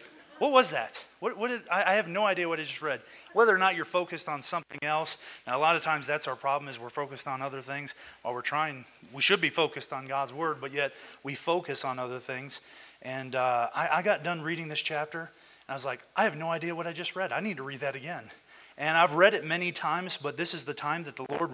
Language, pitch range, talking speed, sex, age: English, 140-170 Hz, 265 wpm, male, 30-49